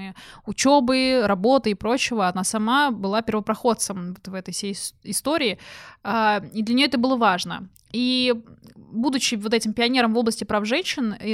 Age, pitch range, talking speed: 20-39, 205-245 Hz, 150 wpm